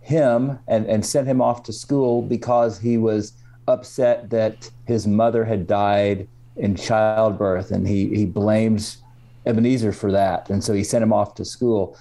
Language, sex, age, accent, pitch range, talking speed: English, male, 40-59, American, 105-120 Hz, 170 wpm